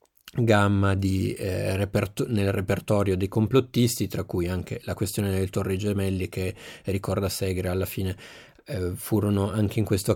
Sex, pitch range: male, 95-110 Hz